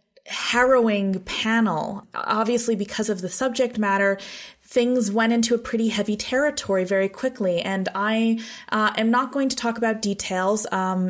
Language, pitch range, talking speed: English, 185-225 Hz, 150 wpm